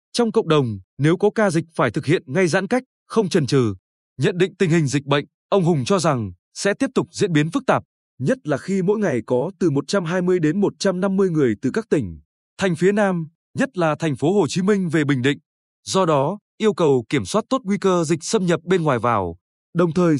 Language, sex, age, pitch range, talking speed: Vietnamese, male, 20-39, 145-195 Hz, 230 wpm